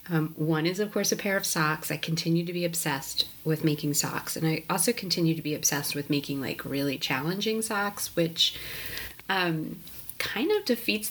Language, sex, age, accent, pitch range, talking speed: English, female, 30-49, American, 145-175 Hz, 190 wpm